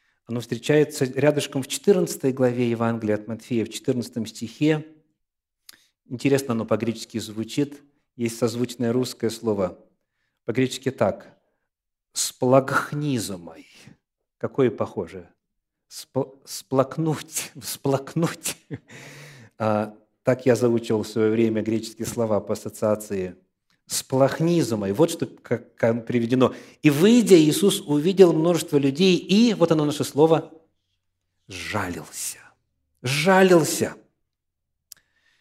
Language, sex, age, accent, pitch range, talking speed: Russian, male, 40-59, native, 110-150 Hz, 95 wpm